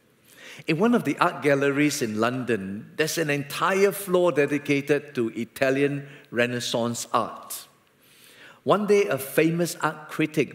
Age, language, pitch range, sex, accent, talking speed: 50-69, English, 120-165 Hz, male, Malaysian, 130 wpm